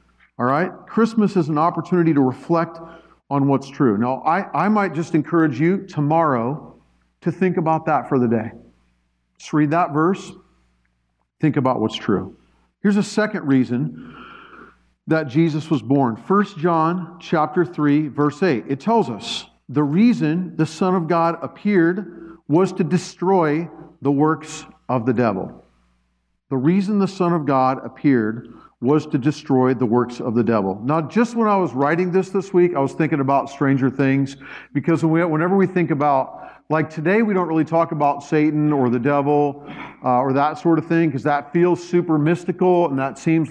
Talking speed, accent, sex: 170 wpm, American, male